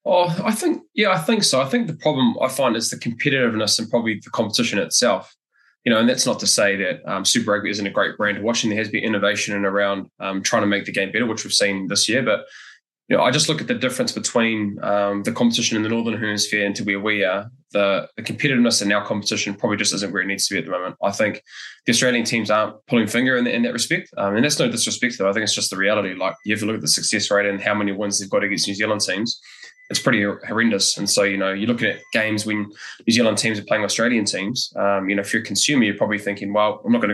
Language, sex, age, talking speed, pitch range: English, male, 20-39, 275 wpm, 100-115 Hz